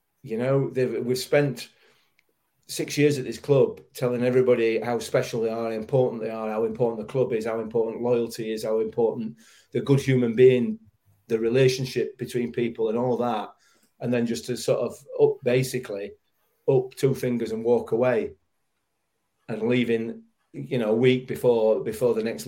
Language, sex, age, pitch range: English, male, 40-59, 115-135 Hz